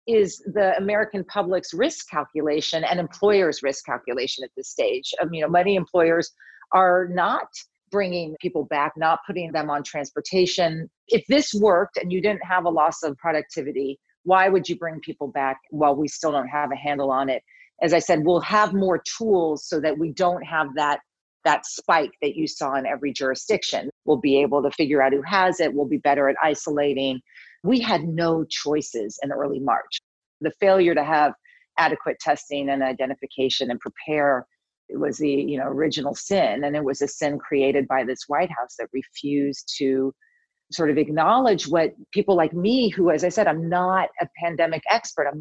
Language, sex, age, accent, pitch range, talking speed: English, female, 40-59, American, 145-185 Hz, 190 wpm